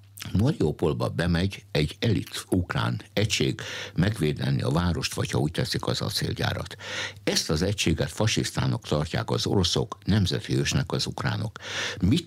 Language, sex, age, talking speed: Hungarian, male, 60-79, 125 wpm